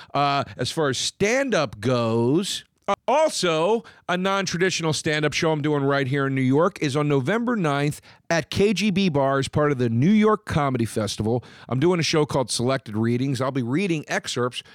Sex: male